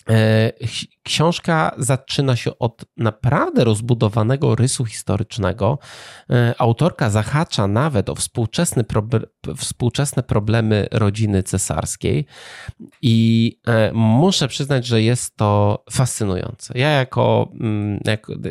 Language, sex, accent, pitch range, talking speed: Polish, male, native, 110-130 Hz, 90 wpm